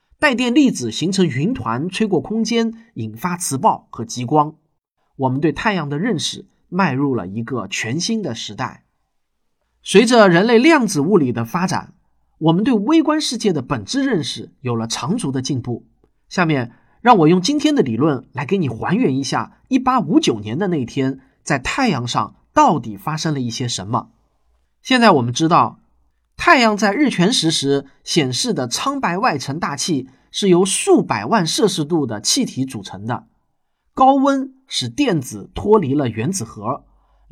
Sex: male